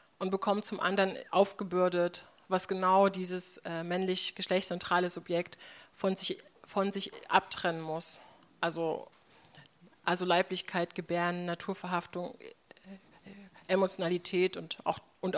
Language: German